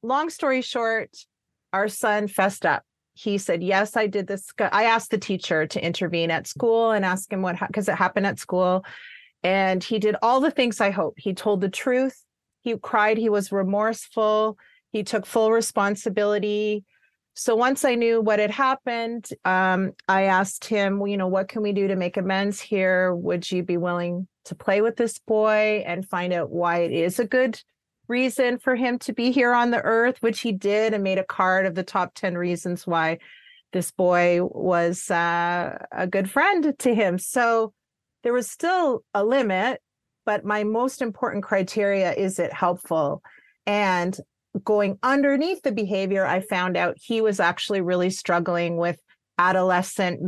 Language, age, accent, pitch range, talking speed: English, 30-49, American, 185-230 Hz, 180 wpm